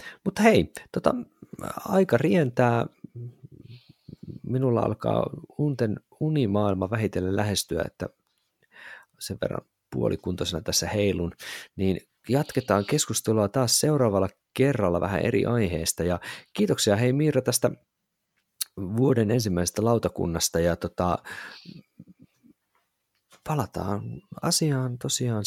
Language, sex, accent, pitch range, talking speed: Finnish, male, native, 85-125 Hz, 90 wpm